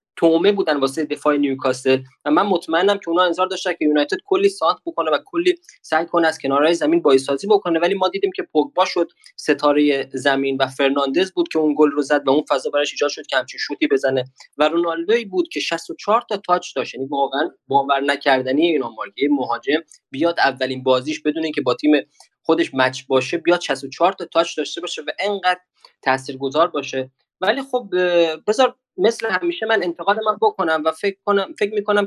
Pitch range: 140-195 Hz